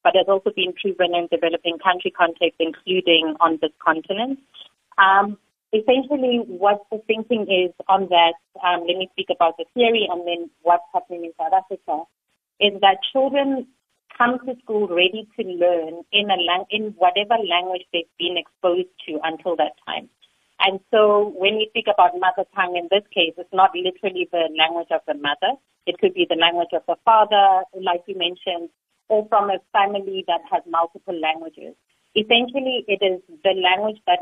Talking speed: 175 wpm